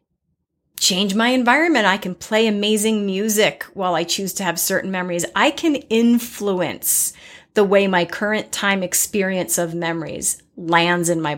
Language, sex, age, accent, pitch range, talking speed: English, female, 40-59, American, 190-275 Hz, 155 wpm